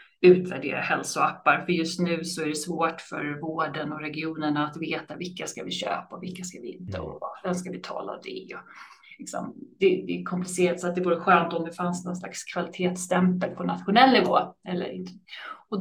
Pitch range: 180-205 Hz